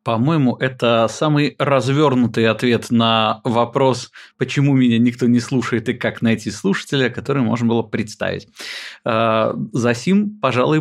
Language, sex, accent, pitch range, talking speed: Russian, male, native, 110-135 Hz, 130 wpm